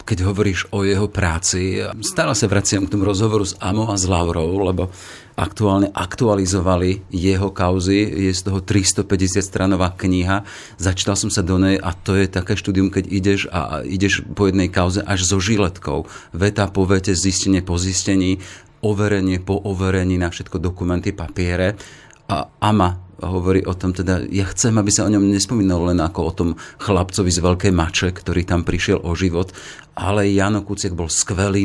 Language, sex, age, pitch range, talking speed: Slovak, male, 40-59, 90-100 Hz, 175 wpm